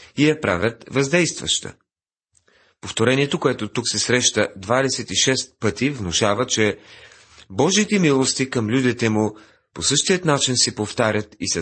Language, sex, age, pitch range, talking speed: Bulgarian, male, 40-59, 95-140 Hz, 130 wpm